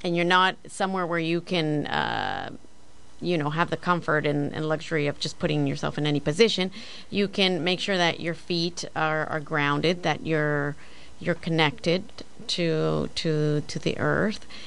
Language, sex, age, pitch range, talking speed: English, female, 30-49, 160-185 Hz, 170 wpm